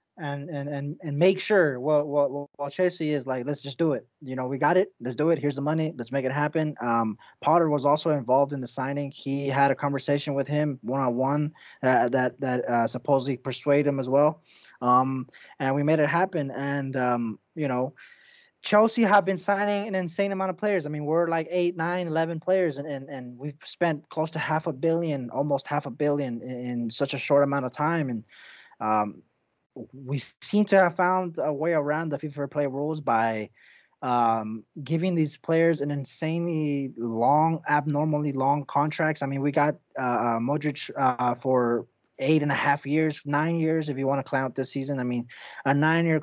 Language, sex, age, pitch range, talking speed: English, male, 20-39, 135-165 Hz, 200 wpm